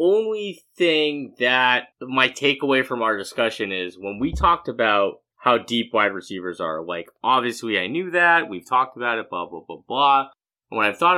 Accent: American